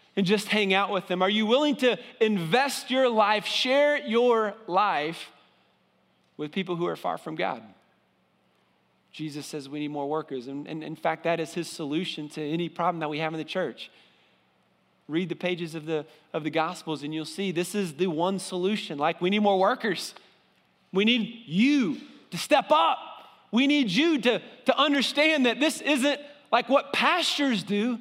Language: English